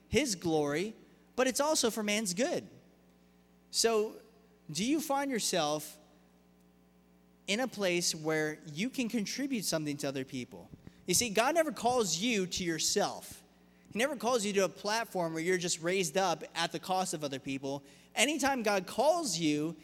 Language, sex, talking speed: English, male, 165 wpm